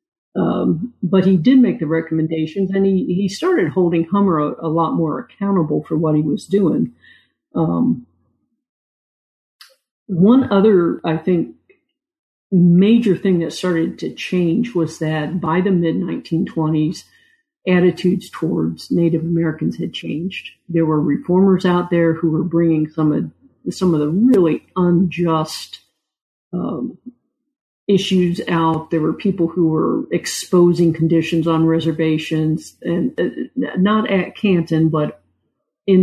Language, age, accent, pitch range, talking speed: English, 50-69, American, 160-195 Hz, 135 wpm